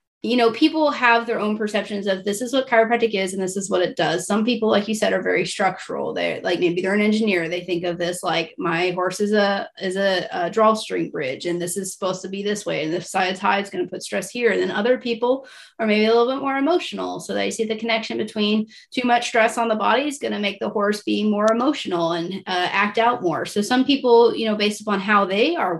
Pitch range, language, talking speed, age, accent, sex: 185-220 Hz, English, 260 wpm, 30-49, American, female